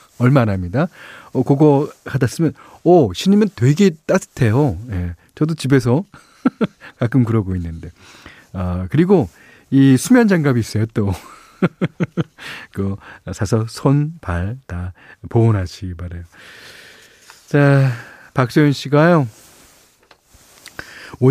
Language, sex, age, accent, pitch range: Korean, male, 40-59, native, 100-150 Hz